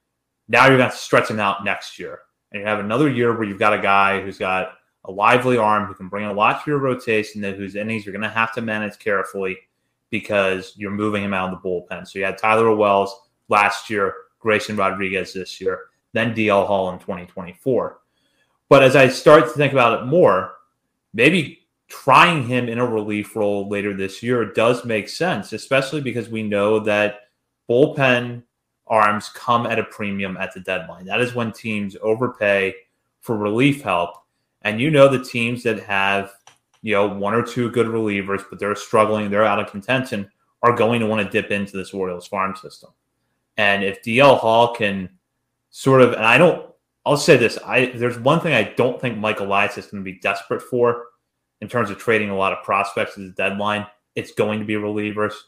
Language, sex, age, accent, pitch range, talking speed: English, male, 30-49, American, 100-120 Hz, 205 wpm